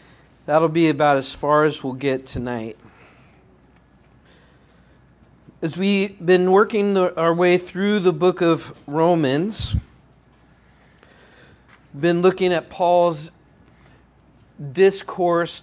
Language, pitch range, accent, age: English, 145-170 Hz, American, 40-59